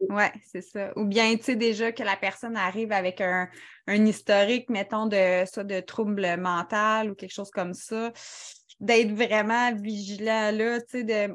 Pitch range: 190-220 Hz